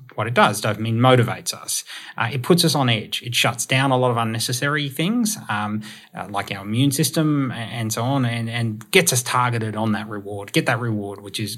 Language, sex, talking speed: English, male, 225 wpm